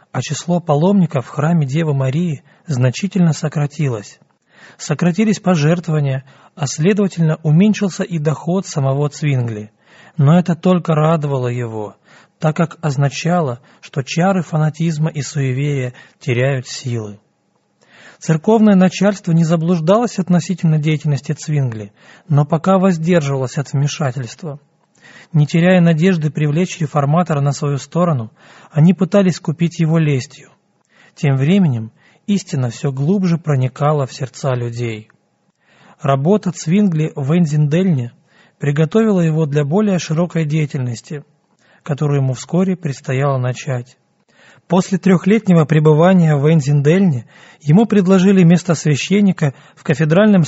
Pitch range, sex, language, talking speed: 140-180 Hz, male, Russian, 110 wpm